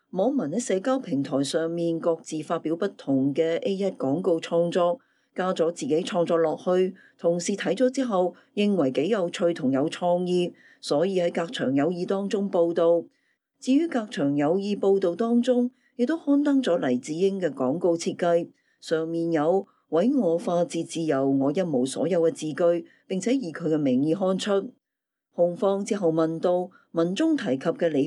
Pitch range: 160-205 Hz